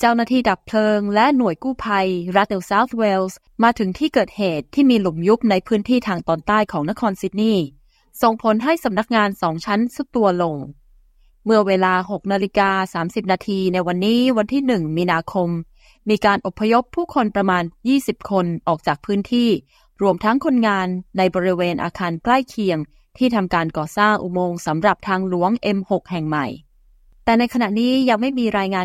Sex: female